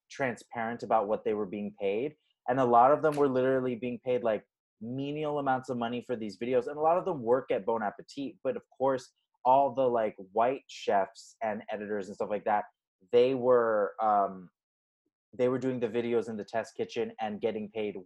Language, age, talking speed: English, 30-49, 200 wpm